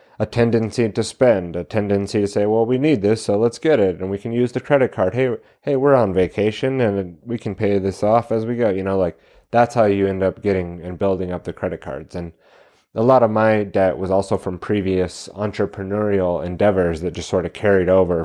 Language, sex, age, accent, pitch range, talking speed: English, male, 30-49, American, 95-110 Hz, 230 wpm